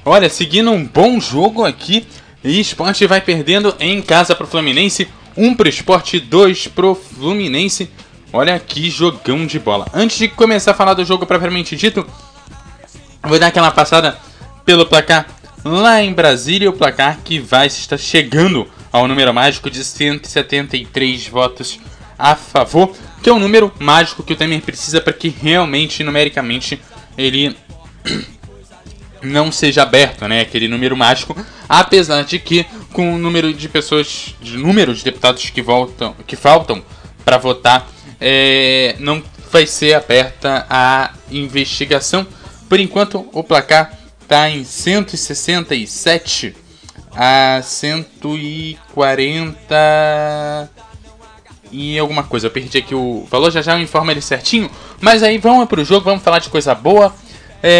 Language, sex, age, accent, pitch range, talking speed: Portuguese, male, 20-39, Brazilian, 135-180 Hz, 145 wpm